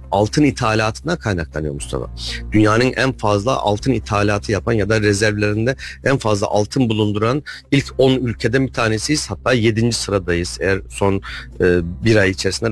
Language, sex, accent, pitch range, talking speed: Turkish, male, native, 100-130 Hz, 140 wpm